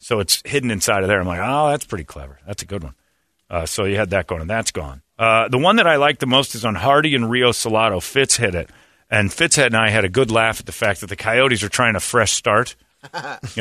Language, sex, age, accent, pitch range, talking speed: English, male, 40-59, American, 100-130 Hz, 275 wpm